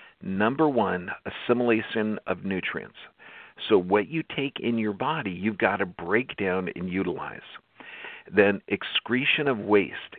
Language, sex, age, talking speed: English, male, 50-69, 135 wpm